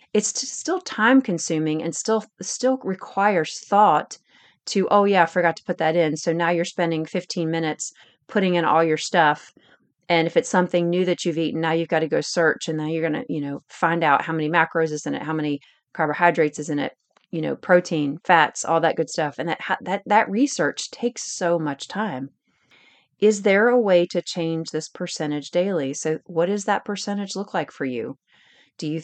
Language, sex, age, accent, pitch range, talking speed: English, female, 30-49, American, 155-190 Hz, 205 wpm